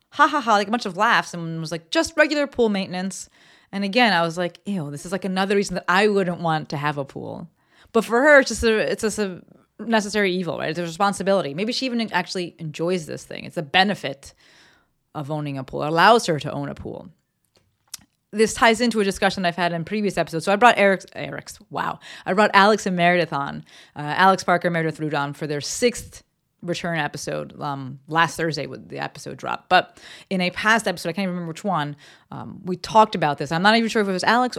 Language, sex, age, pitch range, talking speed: English, female, 30-49, 165-210 Hz, 230 wpm